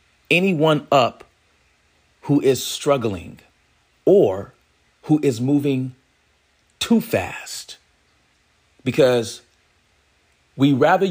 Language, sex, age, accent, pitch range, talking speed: English, male, 40-59, American, 90-135 Hz, 75 wpm